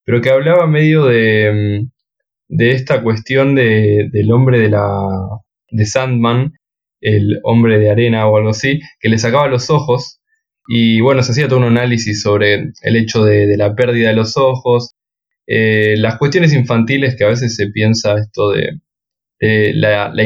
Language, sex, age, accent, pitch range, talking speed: Spanish, male, 10-29, Argentinian, 110-130 Hz, 170 wpm